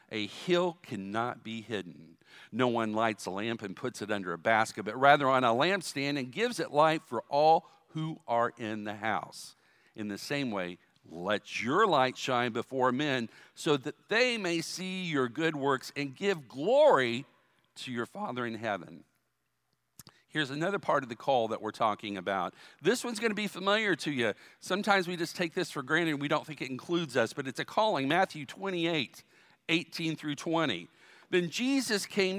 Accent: American